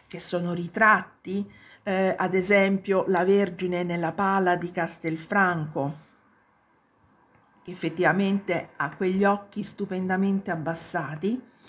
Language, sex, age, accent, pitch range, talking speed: Italian, female, 50-69, native, 165-200 Hz, 100 wpm